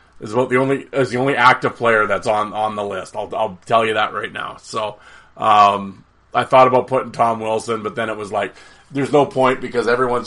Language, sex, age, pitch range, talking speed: English, male, 30-49, 105-130 Hz, 230 wpm